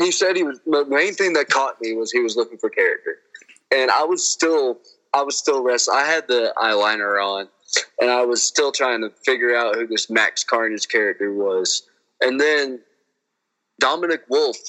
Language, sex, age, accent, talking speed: English, male, 20-39, American, 190 wpm